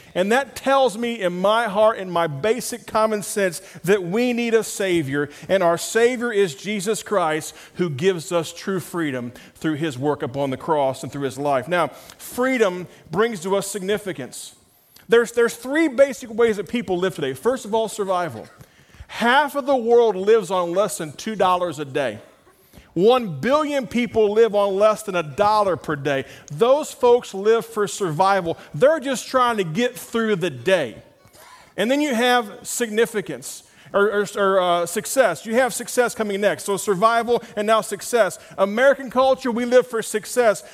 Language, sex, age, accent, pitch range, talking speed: English, male, 40-59, American, 190-245 Hz, 175 wpm